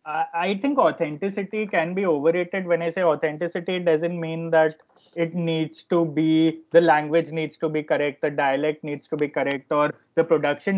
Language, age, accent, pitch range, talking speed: English, 20-39, Indian, 155-190 Hz, 185 wpm